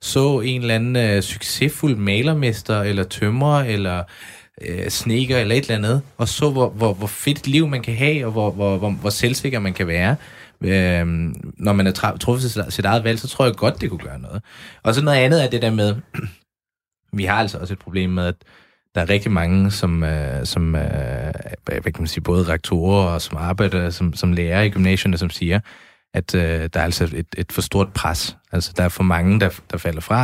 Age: 20-39